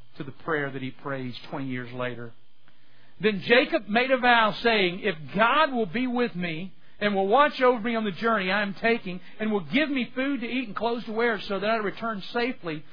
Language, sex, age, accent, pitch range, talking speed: English, male, 50-69, American, 140-205 Hz, 225 wpm